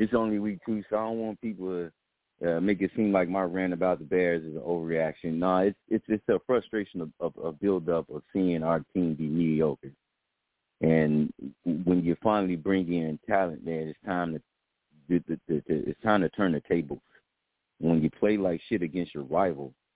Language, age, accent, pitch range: English, 40-59, American, 85-105 Hz